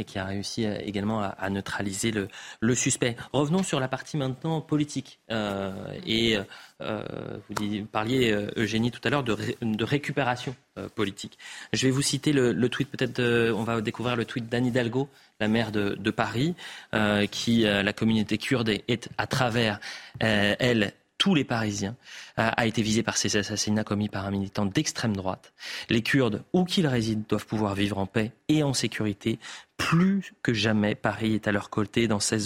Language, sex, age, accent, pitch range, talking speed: French, male, 30-49, French, 110-125 Hz, 195 wpm